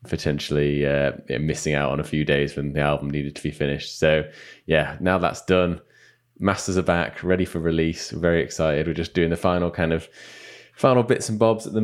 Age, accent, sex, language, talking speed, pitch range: 20-39, British, male, English, 210 wpm, 80-95 Hz